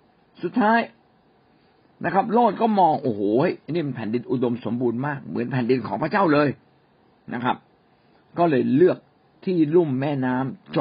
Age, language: 60-79, Thai